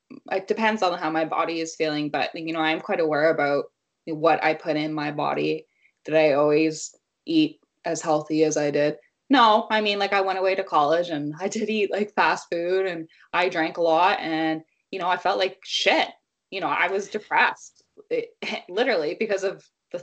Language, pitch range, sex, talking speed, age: English, 155-200 Hz, female, 200 wpm, 20-39